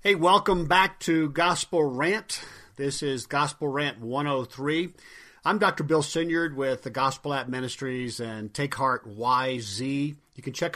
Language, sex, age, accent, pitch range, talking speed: English, male, 50-69, American, 130-160 Hz, 150 wpm